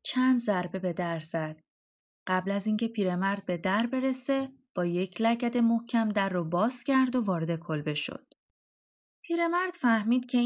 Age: 20-39